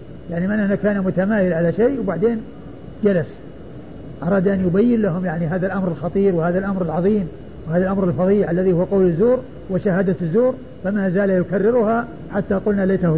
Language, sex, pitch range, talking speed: Arabic, male, 180-220 Hz, 155 wpm